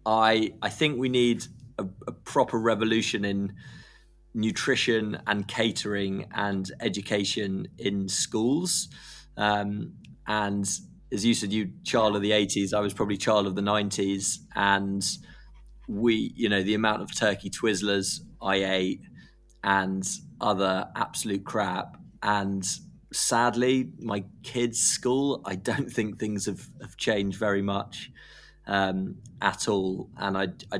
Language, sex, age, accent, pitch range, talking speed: English, male, 20-39, British, 95-110 Hz, 135 wpm